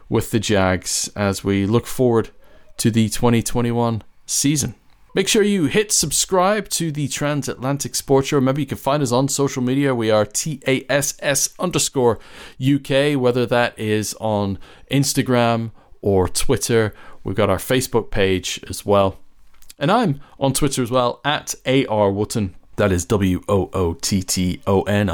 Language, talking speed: English, 140 wpm